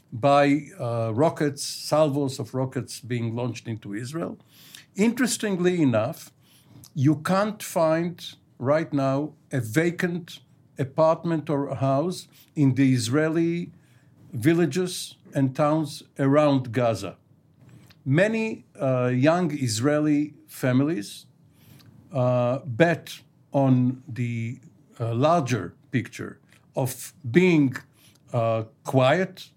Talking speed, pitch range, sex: 95 wpm, 130-155 Hz, male